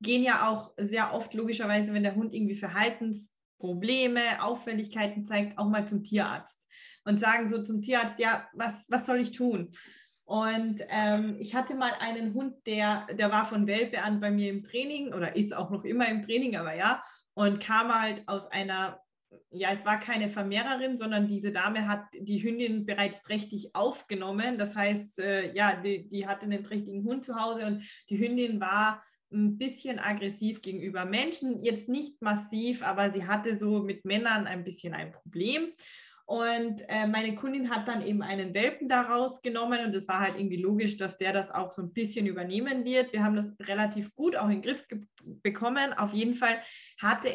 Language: German